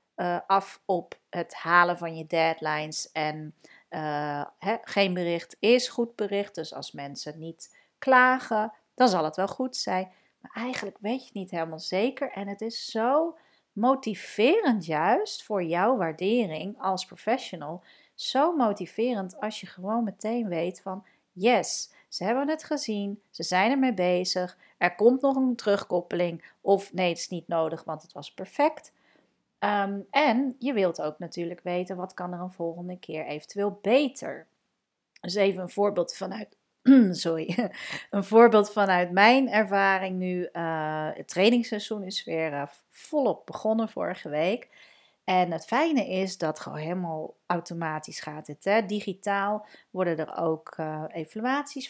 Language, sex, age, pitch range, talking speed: Dutch, female, 40-59, 170-225 Hz, 145 wpm